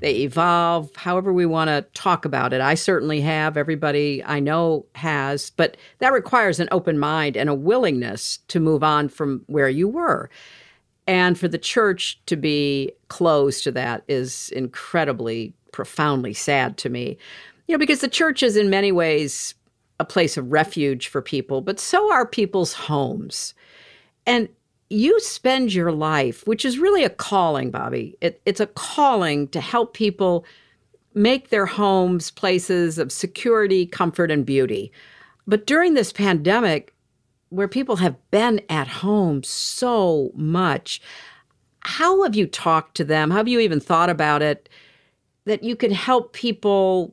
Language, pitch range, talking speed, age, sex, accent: English, 150-205 Hz, 160 wpm, 50-69, female, American